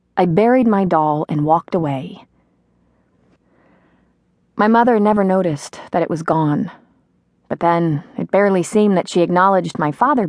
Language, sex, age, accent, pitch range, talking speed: English, female, 30-49, American, 145-205 Hz, 145 wpm